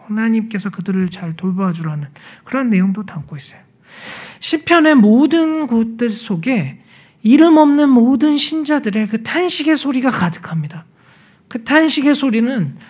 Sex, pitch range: male, 170-240 Hz